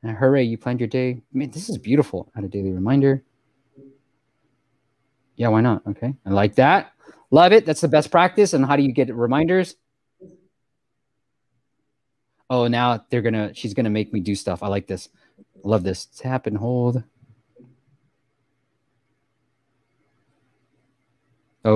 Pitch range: 110-150 Hz